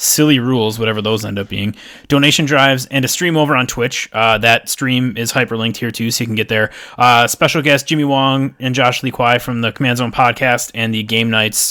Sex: male